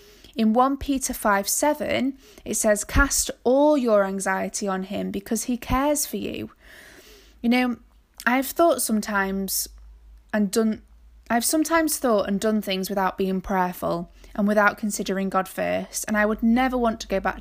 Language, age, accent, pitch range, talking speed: English, 20-39, British, 200-245 Hz, 160 wpm